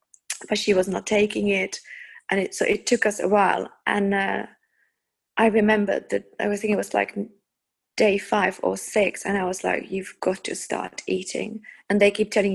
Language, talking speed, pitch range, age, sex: English, 200 wpm, 190-215 Hz, 20-39, female